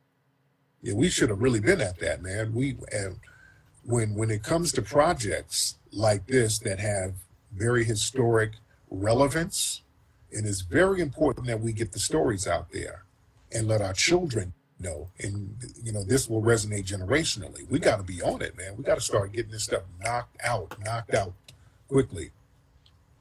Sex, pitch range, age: male, 100-120 Hz, 40-59